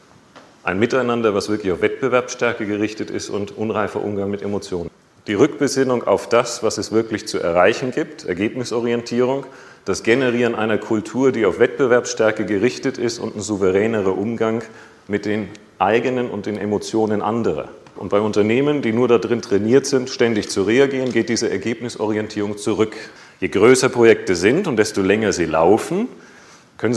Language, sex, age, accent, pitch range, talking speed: German, male, 40-59, German, 105-135 Hz, 155 wpm